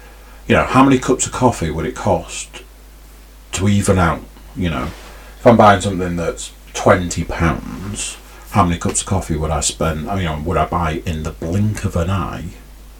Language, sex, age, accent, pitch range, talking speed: English, male, 40-59, British, 80-105 Hz, 200 wpm